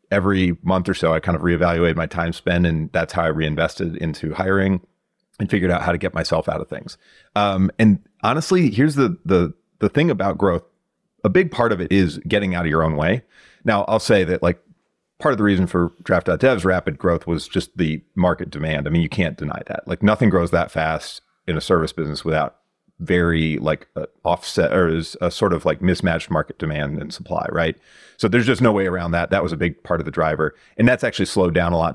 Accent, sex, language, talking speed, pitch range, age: American, male, English, 230 wpm, 80-95 Hz, 30-49